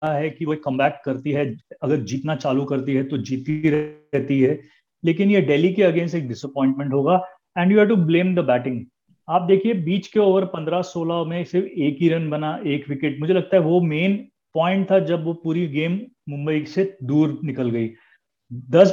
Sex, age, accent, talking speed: male, 30-49, native, 135 wpm